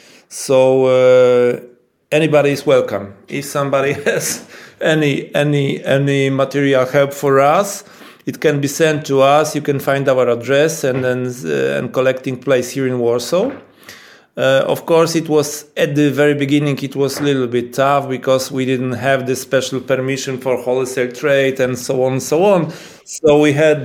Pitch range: 125-145 Hz